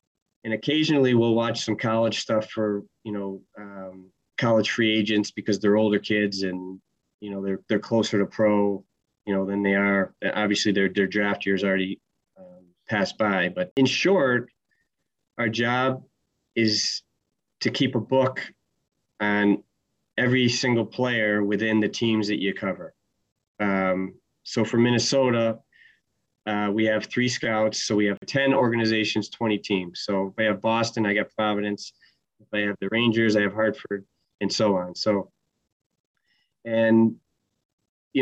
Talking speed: 155 wpm